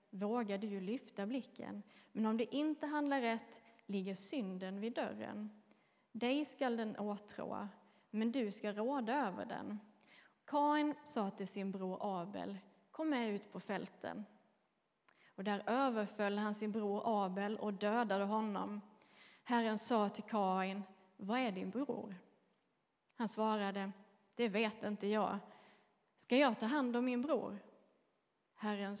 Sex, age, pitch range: female, 30-49, 200-235 Hz